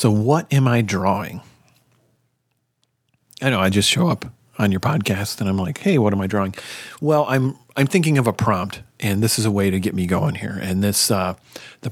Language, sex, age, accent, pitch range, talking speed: English, male, 40-59, American, 100-140 Hz, 215 wpm